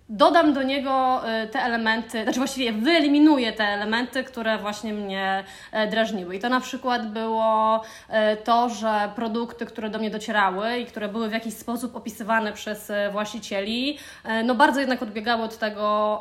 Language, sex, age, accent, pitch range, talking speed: Polish, female, 20-39, native, 210-240 Hz, 150 wpm